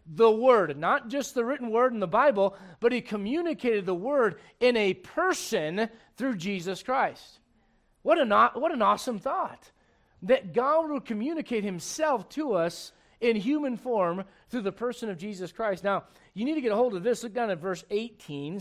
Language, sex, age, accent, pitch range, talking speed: English, male, 40-59, American, 165-220 Hz, 180 wpm